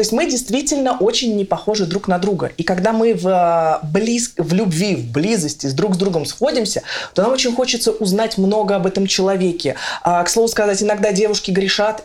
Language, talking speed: Russian, 200 wpm